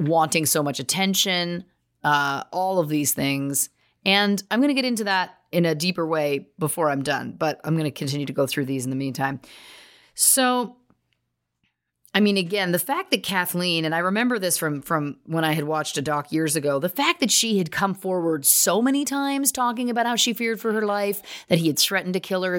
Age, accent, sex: 30-49, American, female